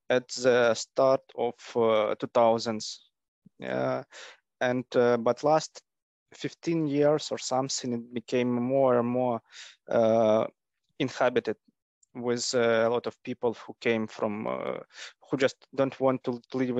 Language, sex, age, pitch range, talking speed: English, male, 20-39, 115-135 Hz, 135 wpm